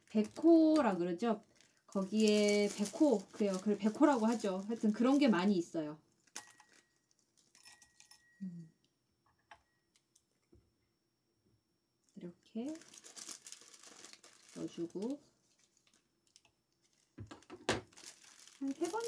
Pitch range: 180-250 Hz